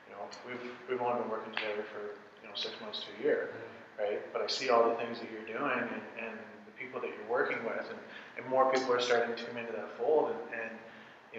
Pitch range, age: 120-190 Hz, 30-49